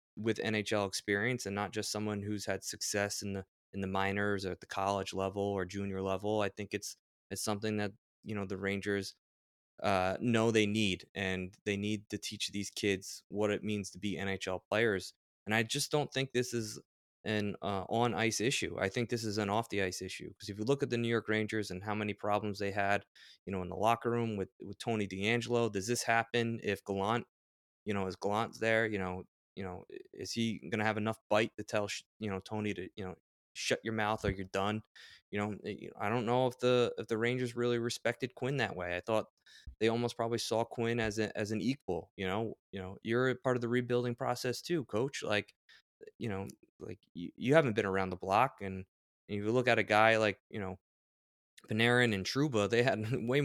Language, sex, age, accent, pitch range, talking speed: English, male, 20-39, American, 100-115 Hz, 225 wpm